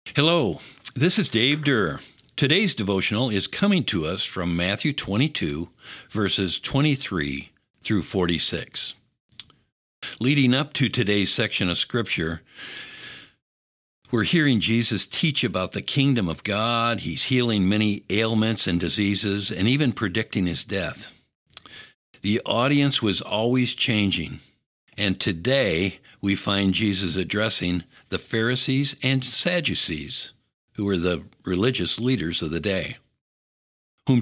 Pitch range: 95-130 Hz